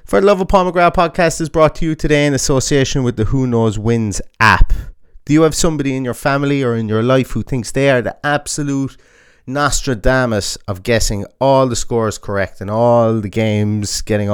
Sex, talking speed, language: male, 200 wpm, English